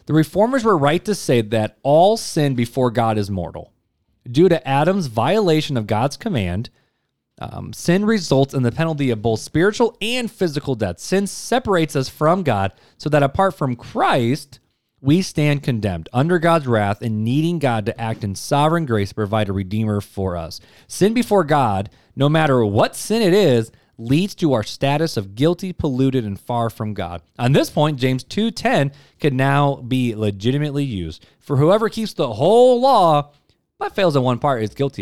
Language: English